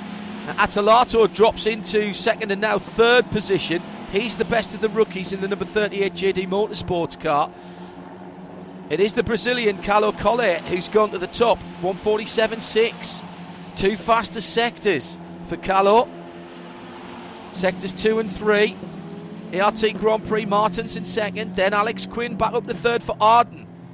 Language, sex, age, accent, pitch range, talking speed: English, male, 40-59, British, 170-215 Hz, 145 wpm